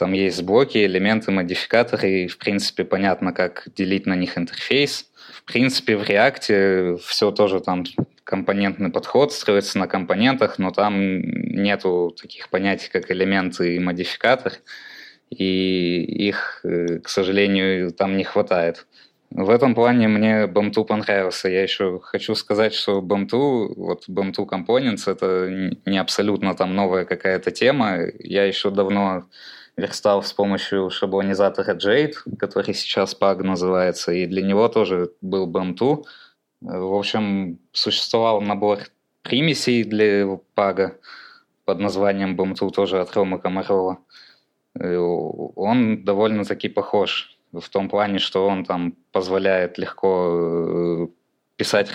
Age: 20-39